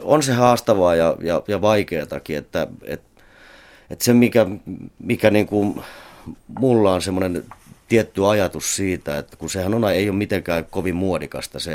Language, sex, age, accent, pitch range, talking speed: Finnish, male, 30-49, native, 75-95 Hz, 135 wpm